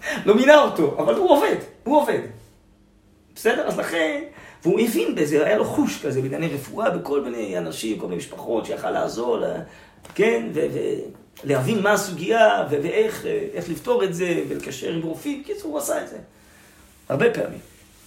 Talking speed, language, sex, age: 165 wpm, Hebrew, male, 40-59